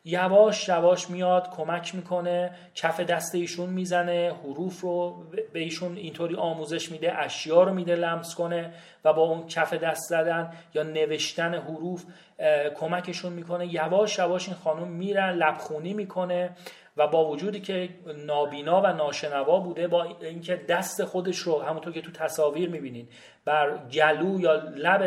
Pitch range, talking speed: 155-185 Hz, 145 wpm